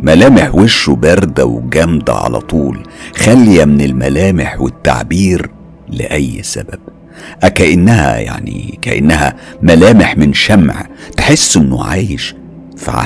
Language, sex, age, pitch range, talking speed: Arabic, male, 50-69, 70-90 Hz, 100 wpm